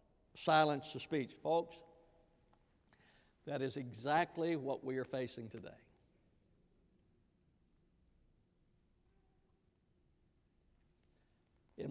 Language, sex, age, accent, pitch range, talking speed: English, male, 60-79, American, 135-155 Hz, 65 wpm